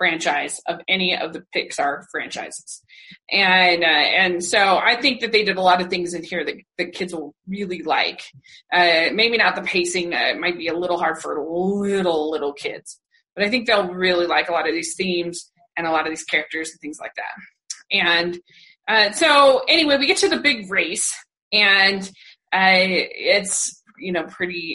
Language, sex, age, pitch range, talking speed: English, female, 20-39, 175-210 Hz, 195 wpm